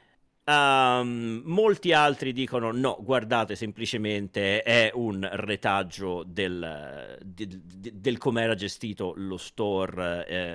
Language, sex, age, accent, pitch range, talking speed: Italian, male, 40-59, native, 95-130 Hz, 120 wpm